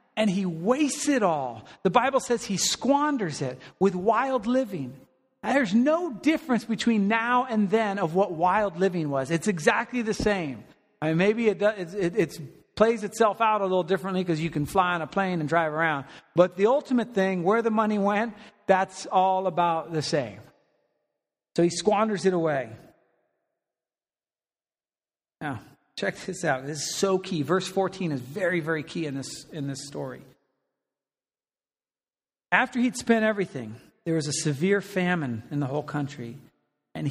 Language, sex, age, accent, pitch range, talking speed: English, male, 40-59, American, 150-210 Hz, 165 wpm